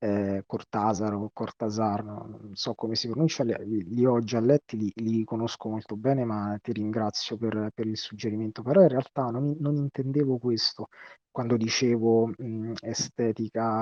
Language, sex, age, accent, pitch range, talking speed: Italian, male, 30-49, native, 110-140 Hz, 150 wpm